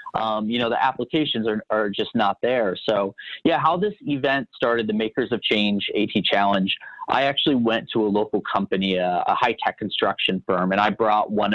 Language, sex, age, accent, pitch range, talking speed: English, male, 30-49, American, 105-140 Hz, 195 wpm